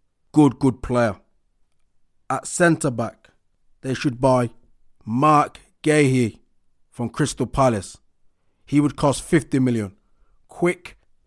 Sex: male